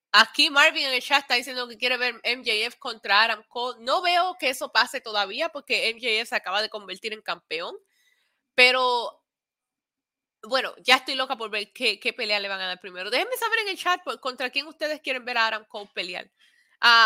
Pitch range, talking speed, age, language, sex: 220-315 Hz, 210 wpm, 20-39, Spanish, female